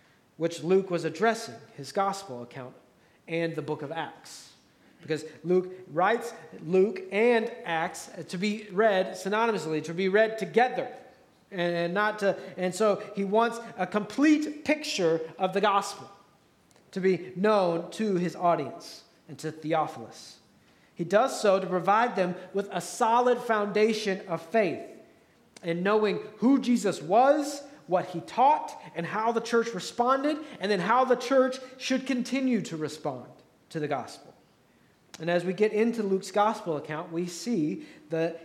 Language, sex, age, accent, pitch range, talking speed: English, male, 40-59, American, 170-230 Hz, 150 wpm